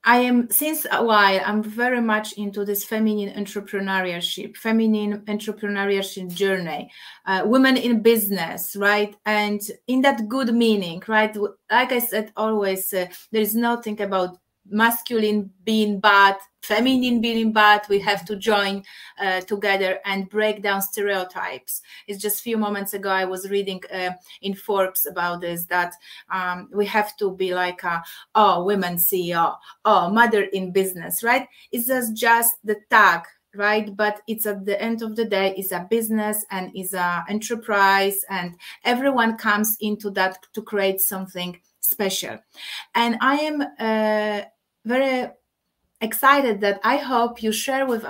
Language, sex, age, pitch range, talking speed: English, female, 30-49, 195-230 Hz, 150 wpm